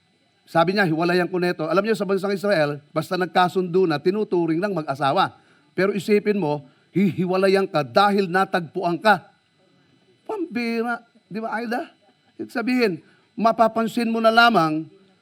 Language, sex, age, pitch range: Filipino, male, 40-59, 185-225 Hz